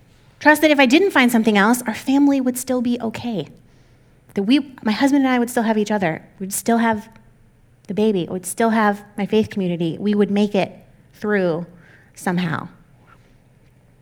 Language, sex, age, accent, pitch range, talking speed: English, female, 30-49, American, 140-210 Hz, 180 wpm